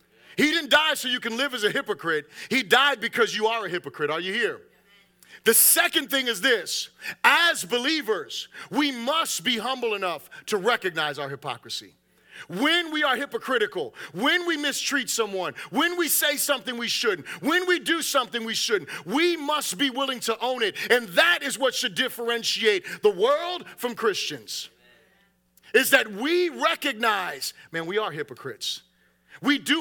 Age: 40-59